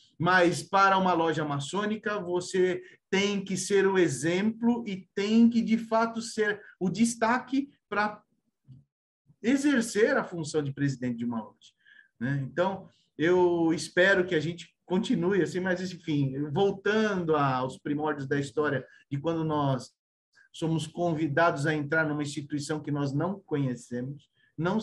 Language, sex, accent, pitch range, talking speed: Portuguese, male, Brazilian, 145-205 Hz, 140 wpm